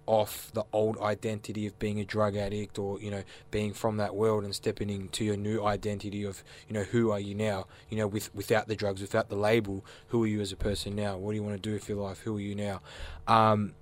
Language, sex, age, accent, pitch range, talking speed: English, male, 20-39, Australian, 105-115 Hz, 255 wpm